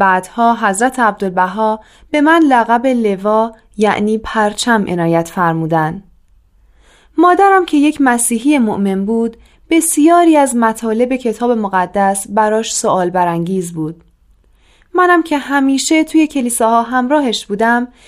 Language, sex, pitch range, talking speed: Persian, female, 195-270 Hz, 110 wpm